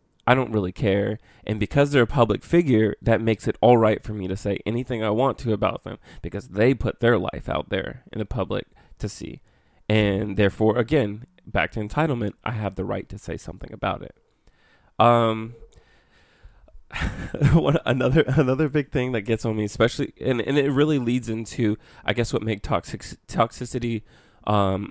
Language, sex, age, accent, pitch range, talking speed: English, male, 20-39, American, 105-125 Hz, 180 wpm